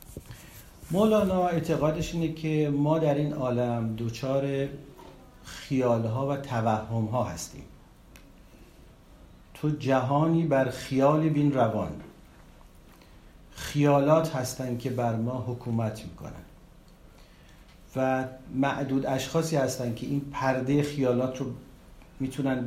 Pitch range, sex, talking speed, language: 125-155 Hz, male, 95 wpm, Persian